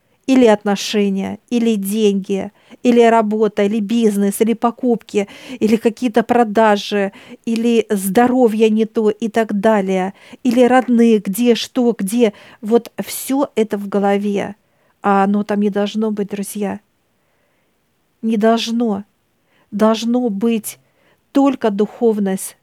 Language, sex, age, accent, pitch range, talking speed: Russian, female, 50-69, native, 210-235 Hz, 115 wpm